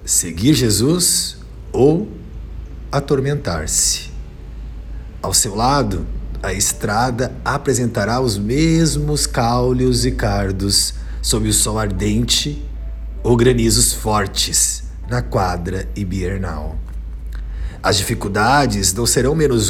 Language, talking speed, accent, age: Portuguese, 90 wpm, Brazilian, 50-69